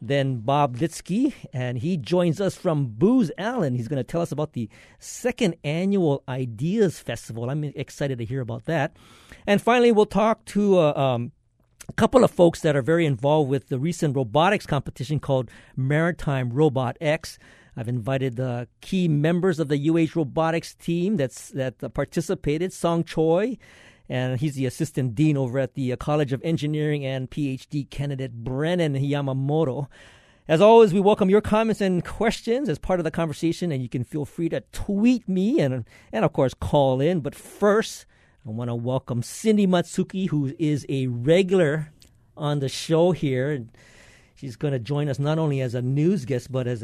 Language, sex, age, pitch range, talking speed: English, male, 50-69, 130-175 Hz, 180 wpm